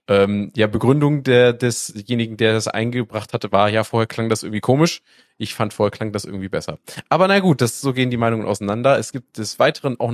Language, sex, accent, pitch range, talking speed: German, male, German, 105-130 Hz, 220 wpm